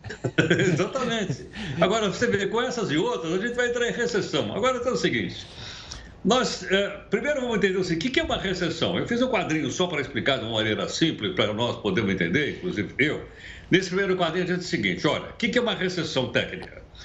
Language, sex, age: Portuguese, male, 60-79